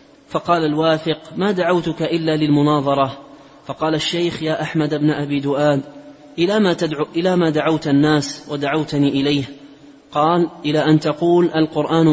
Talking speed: 135 wpm